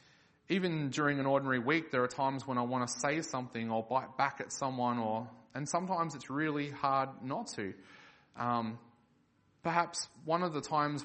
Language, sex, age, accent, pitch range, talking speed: English, male, 20-39, Australian, 125-155 Hz, 180 wpm